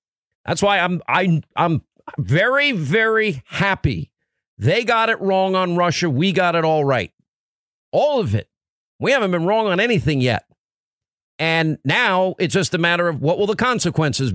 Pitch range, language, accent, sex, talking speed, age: 150-210 Hz, English, American, male, 165 wpm, 50-69